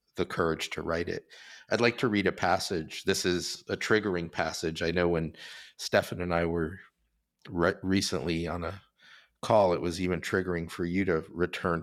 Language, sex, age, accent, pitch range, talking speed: English, male, 50-69, American, 85-95 Hz, 185 wpm